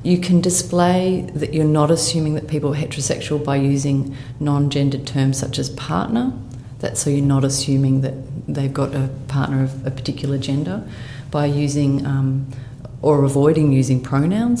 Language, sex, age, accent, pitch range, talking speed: English, female, 30-49, Australian, 130-145 Hz, 160 wpm